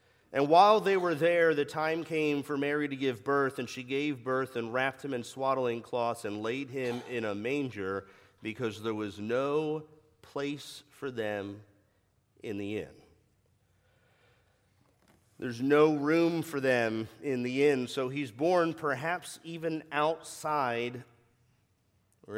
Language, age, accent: English, 40-59, American